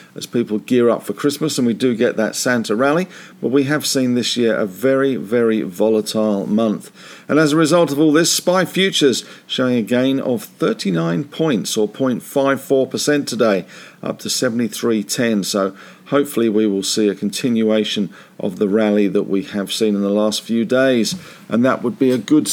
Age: 50-69